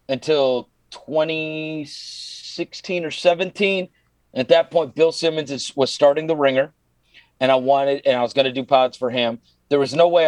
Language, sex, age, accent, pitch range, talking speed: English, male, 40-59, American, 120-145 Hz, 175 wpm